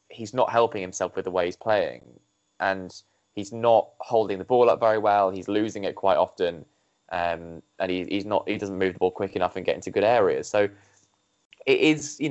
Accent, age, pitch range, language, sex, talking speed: British, 10-29, 95-125 Hz, English, male, 210 wpm